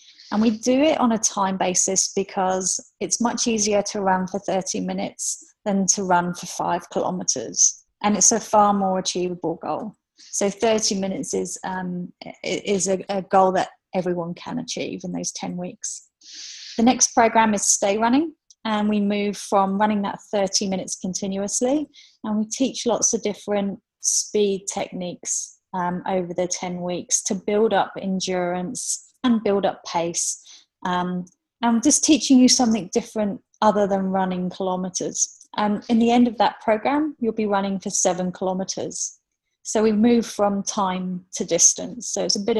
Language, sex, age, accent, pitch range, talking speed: English, female, 30-49, British, 185-225 Hz, 170 wpm